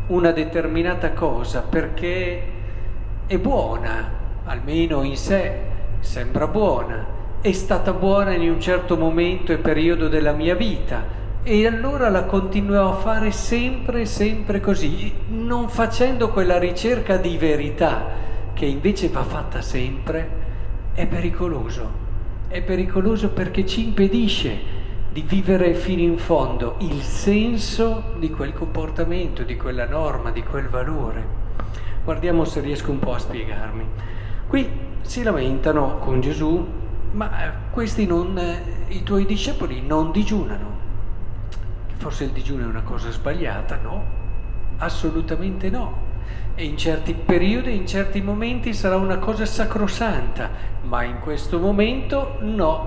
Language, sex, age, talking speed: Italian, male, 50-69, 130 wpm